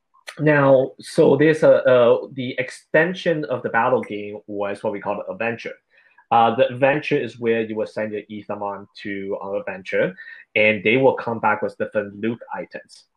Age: 20-39